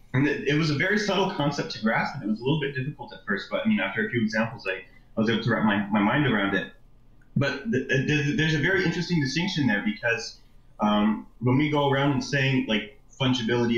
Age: 30-49